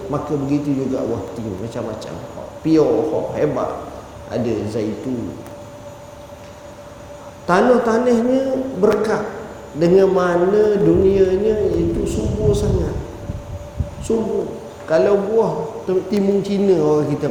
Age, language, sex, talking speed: 40-59, Malay, male, 85 wpm